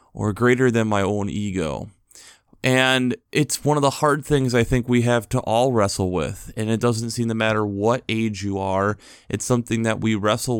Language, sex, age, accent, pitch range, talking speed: English, male, 20-39, American, 110-130 Hz, 205 wpm